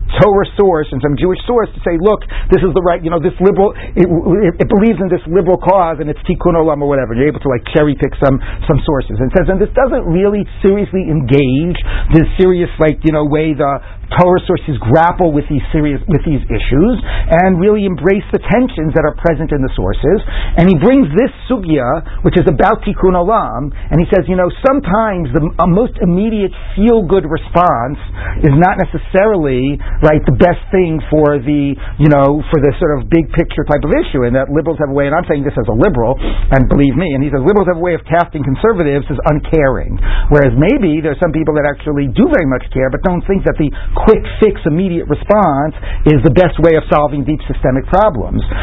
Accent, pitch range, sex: American, 135-175 Hz, male